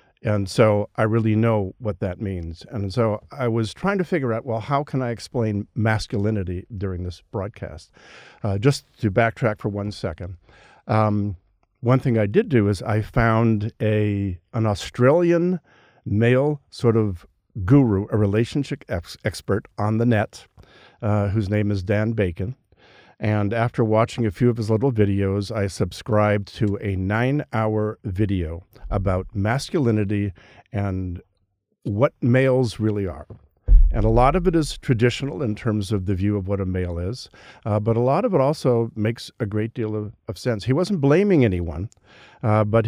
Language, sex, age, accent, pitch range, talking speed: English, male, 50-69, American, 100-120 Hz, 170 wpm